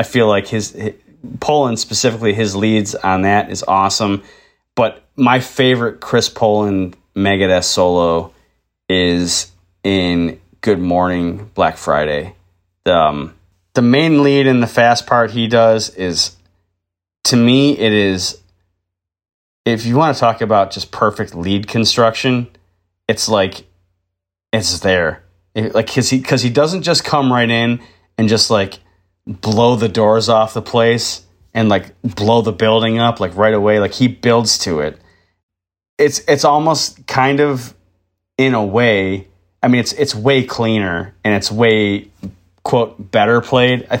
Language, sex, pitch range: English, male, 95-120 Hz